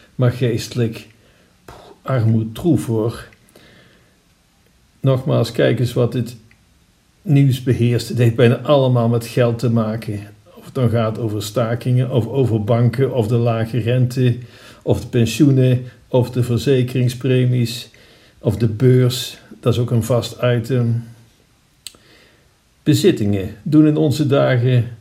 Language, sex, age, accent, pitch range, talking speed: Dutch, male, 50-69, Dutch, 115-135 Hz, 125 wpm